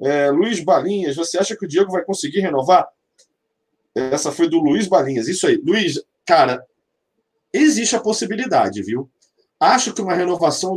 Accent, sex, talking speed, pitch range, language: Brazilian, male, 155 wpm, 155-225 Hz, Portuguese